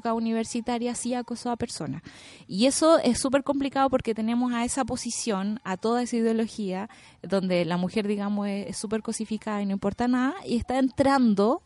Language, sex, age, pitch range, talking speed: Spanish, female, 20-39, 185-230 Hz, 170 wpm